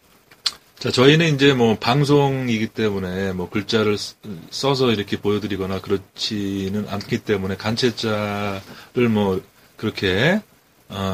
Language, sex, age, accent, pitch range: Korean, male, 30-49, native, 95-125 Hz